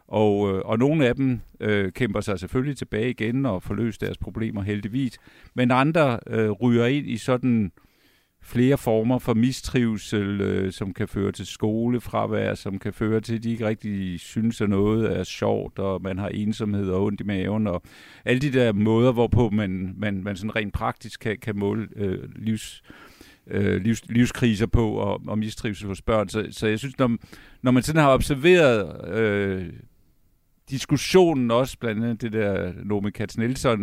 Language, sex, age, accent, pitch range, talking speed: Danish, male, 50-69, native, 105-130 Hz, 160 wpm